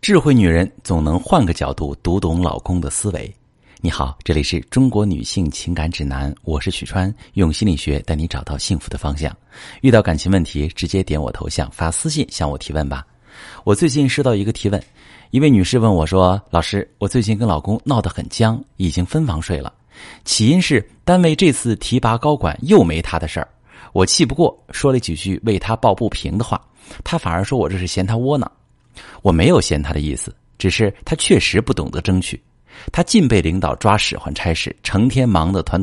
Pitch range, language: 85-120 Hz, Chinese